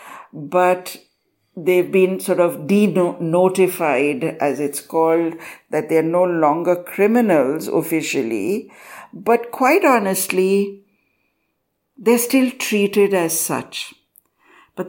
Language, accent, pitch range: English, Indian, 165-205 Hz